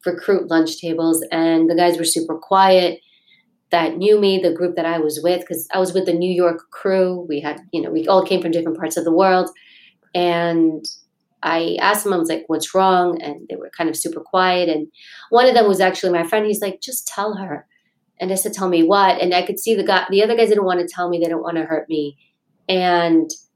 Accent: American